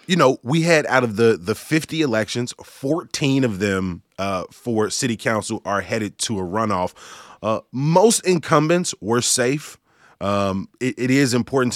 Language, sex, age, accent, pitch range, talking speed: English, male, 20-39, American, 100-125 Hz, 165 wpm